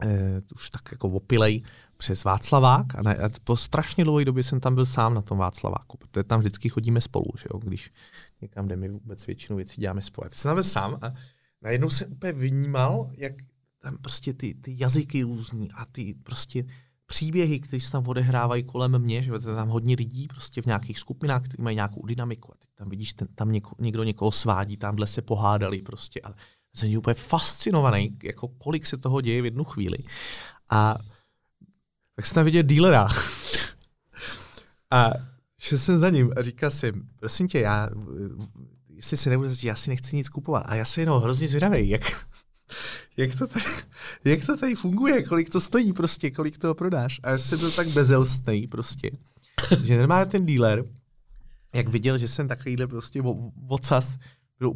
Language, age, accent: Czech, 30-49, native